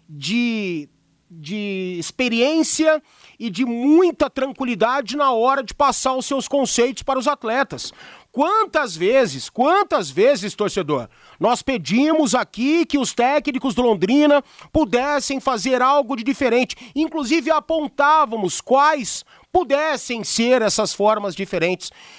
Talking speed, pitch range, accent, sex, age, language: 115 wpm, 230-305 Hz, Brazilian, male, 40-59, Portuguese